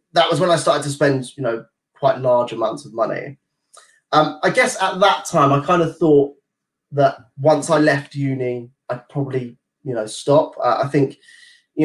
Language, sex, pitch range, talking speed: English, male, 125-145 Hz, 190 wpm